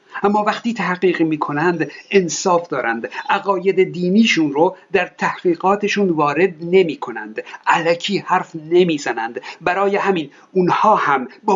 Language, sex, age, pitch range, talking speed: Persian, male, 50-69, 150-205 Hz, 110 wpm